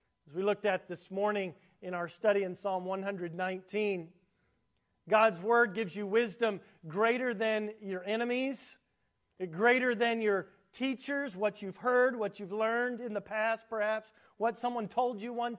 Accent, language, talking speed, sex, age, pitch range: American, English, 155 wpm, male, 40-59, 175-225 Hz